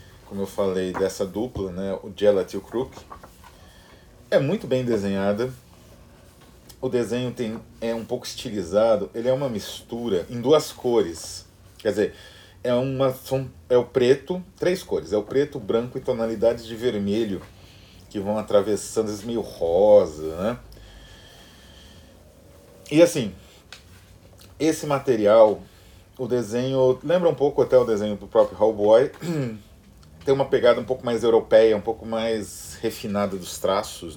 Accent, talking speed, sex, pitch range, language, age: Brazilian, 140 wpm, male, 95-125 Hz, Portuguese, 40-59